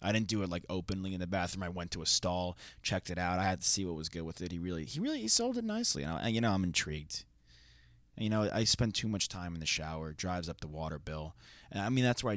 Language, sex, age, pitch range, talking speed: English, male, 20-39, 80-100 Hz, 280 wpm